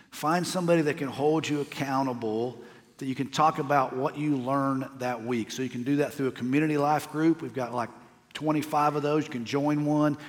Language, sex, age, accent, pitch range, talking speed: English, male, 50-69, American, 130-150 Hz, 215 wpm